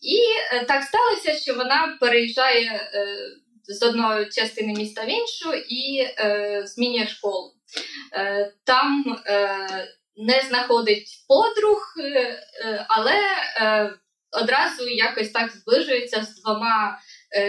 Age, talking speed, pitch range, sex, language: 20-39, 115 wpm, 215-295 Hz, female, Ukrainian